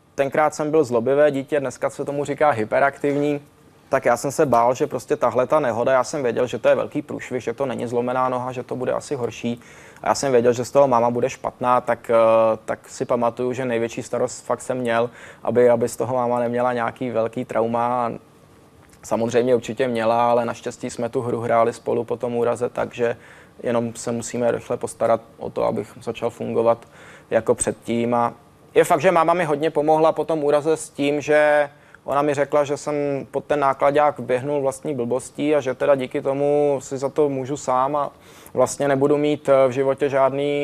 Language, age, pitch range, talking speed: Czech, 20-39, 120-145 Hz, 200 wpm